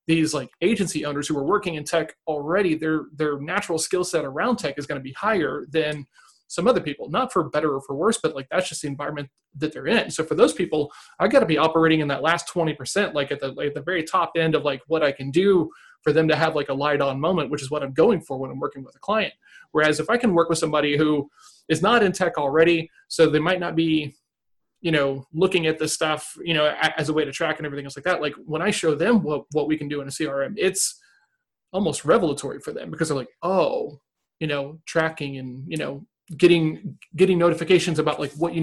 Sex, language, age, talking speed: male, English, 30-49, 250 wpm